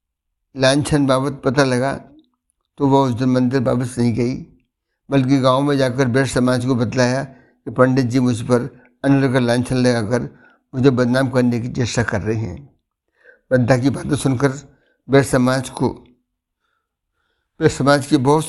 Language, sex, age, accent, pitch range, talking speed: Hindi, male, 60-79, native, 125-145 Hz, 155 wpm